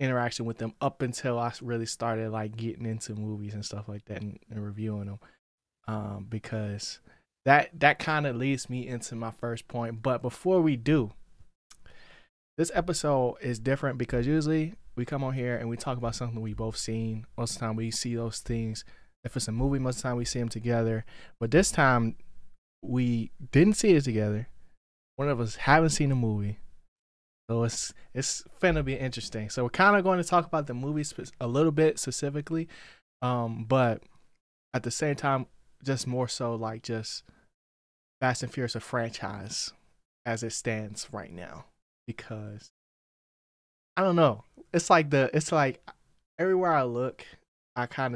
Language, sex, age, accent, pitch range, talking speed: English, male, 20-39, American, 115-140 Hz, 180 wpm